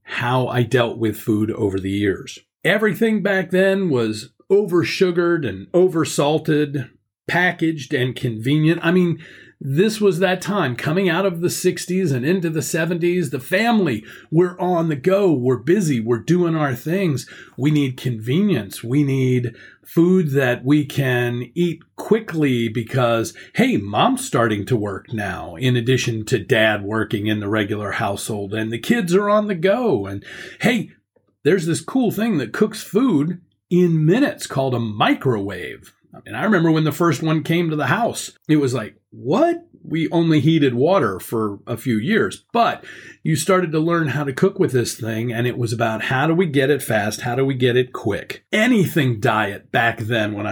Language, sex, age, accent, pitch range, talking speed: English, male, 40-59, American, 115-175 Hz, 175 wpm